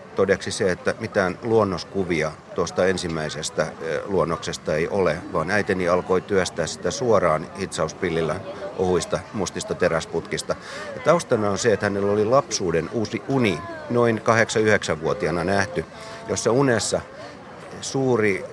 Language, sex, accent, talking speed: Finnish, male, native, 115 wpm